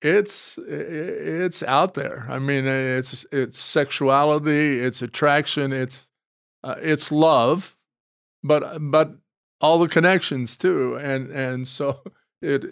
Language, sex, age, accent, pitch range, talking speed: English, male, 50-69, American, 135-160 Hz, 120 wpm